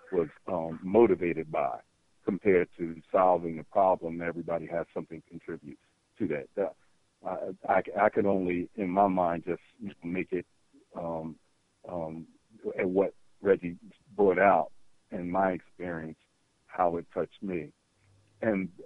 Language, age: English, 60-79